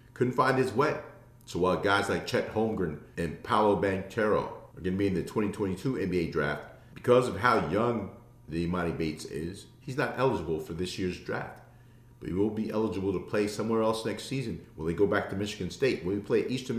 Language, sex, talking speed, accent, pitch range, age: English, male, 205 wpm, American, 95-120 Hz, 40-59